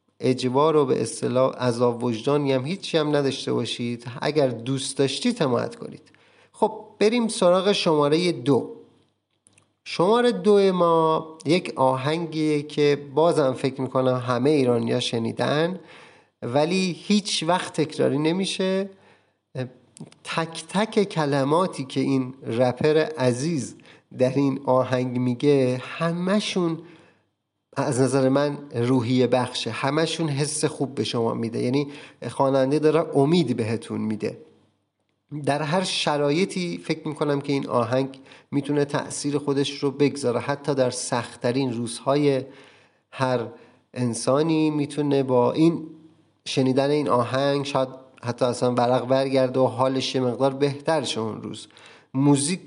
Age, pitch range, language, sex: 30-49, 125-160 Hz, Persian, male